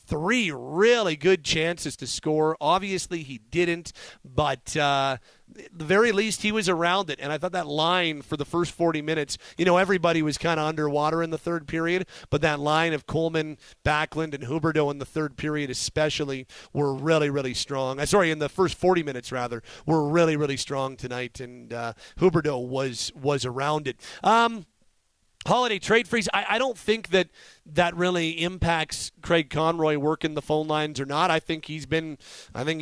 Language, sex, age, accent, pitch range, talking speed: English, male, 40-59, American, 140-170 Hz, 190 wpm